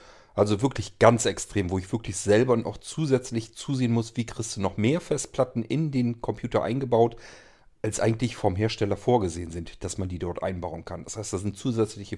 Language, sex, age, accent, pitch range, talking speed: German, male, 40-59, German, 100-120 Hz, 190 wpm